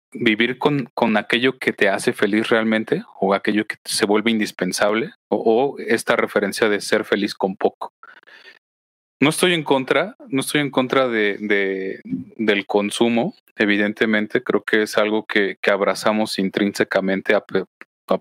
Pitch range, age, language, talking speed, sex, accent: 100-115 Hz, 30-49, Spanish, 150 wpm, male, Mexican